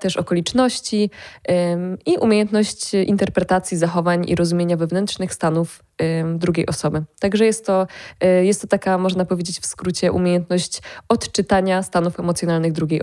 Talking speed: 120 wpm